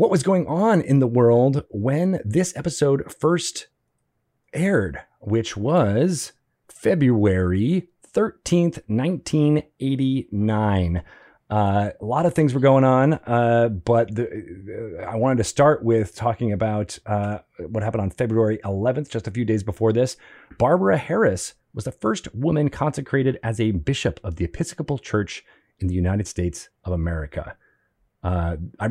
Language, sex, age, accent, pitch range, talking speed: English, male, 30-49, American, 95-125 Hz, 140 wpm